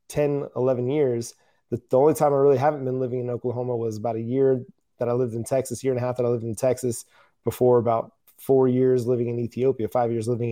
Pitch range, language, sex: 120-140 Hz, English, male